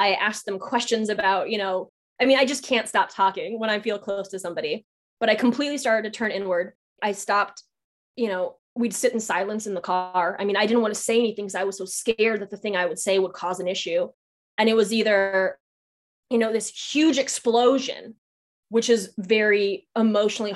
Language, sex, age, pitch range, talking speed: English, female, 20-39, 195-235 Hz, 215 wpm